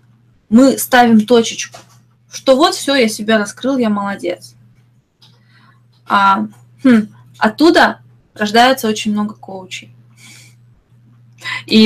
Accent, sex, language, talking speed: native, female, Russian, 95 wpm